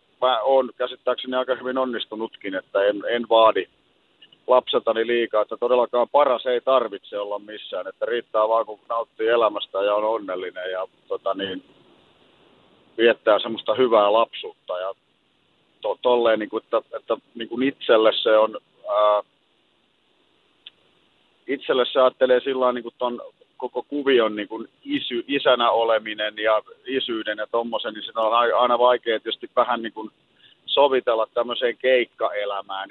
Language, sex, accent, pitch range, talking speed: Finnish, male, native, 110-130 Hz, 115 wpm